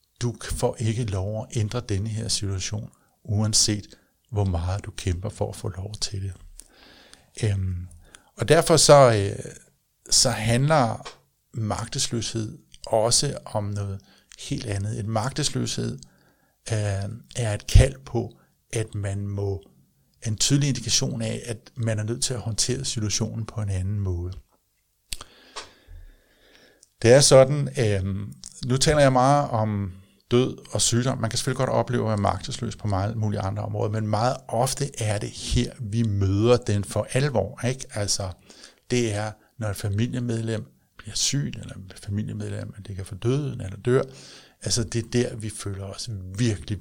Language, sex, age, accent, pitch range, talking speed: Danish, male, 60-79, native, 100-125 Hz, 155 wpm